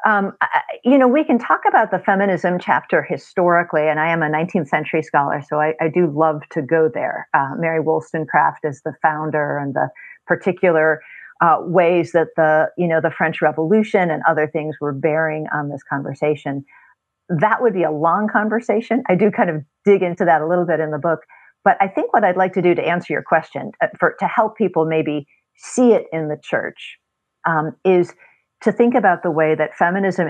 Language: English